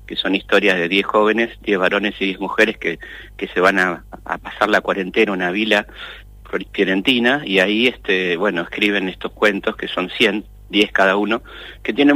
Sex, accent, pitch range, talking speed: male, Argentinian, 95-105 Hz, 185 wpm